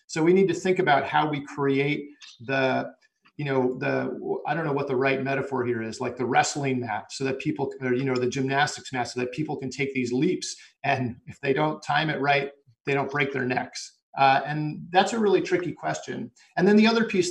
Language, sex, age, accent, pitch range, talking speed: English, male, 40-59, American, 125-145 Hz, 230 wpm